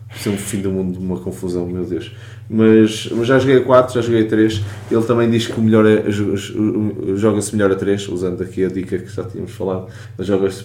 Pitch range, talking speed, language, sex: 95-115 Hz, 215 wpm, Portuguese, male